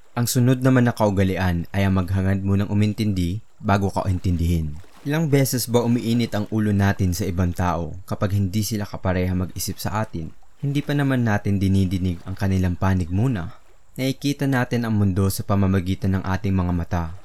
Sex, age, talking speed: male, 20-39, 170 wpm